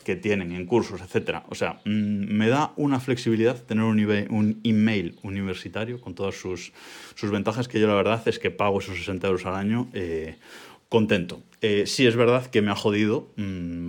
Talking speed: 185 wpm